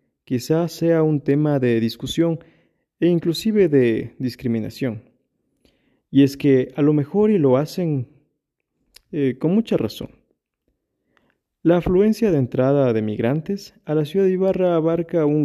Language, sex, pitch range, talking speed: Spanish, male, 125-160 Hz, 140 wpm